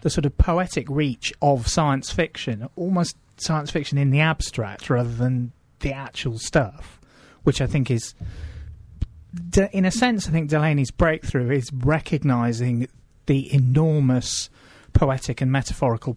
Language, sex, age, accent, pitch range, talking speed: English, male, 30-49, British, 120-150 Hz, 135 wpm